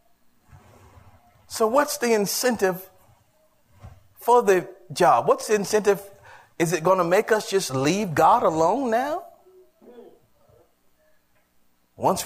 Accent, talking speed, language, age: American, 110 wpm, English, 40-59